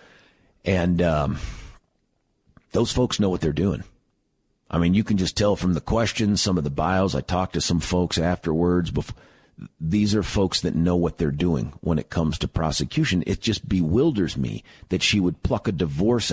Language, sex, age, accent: English, male, 50-69, American